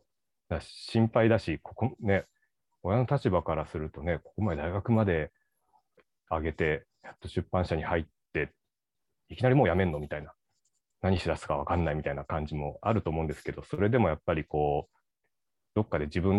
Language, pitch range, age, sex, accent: Japanese, 80-110 Hz, 30-49, male, native